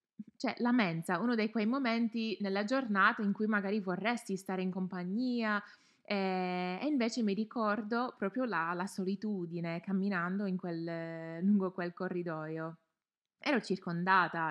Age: 20-39